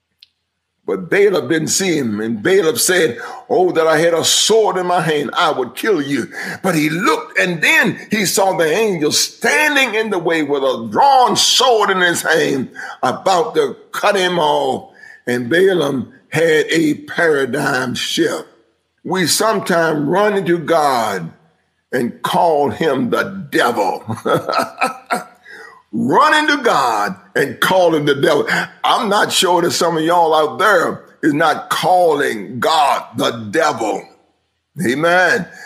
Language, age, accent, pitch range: English, 50-69, American, 160-205 Hz